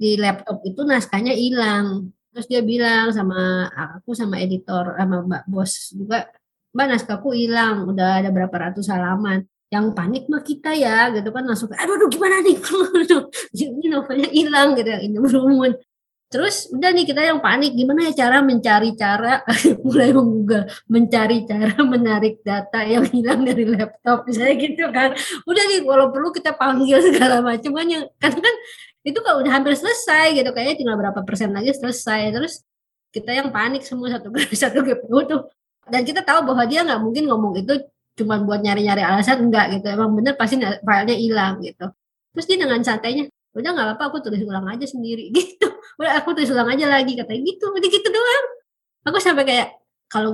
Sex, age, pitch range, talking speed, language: male, 20-39, 215-295 Hz, 170 wpm, Indonesian